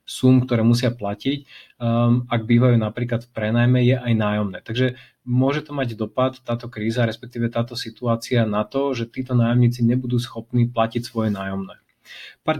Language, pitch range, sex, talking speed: Slovak, 115-125 Hz, male, 160 wpm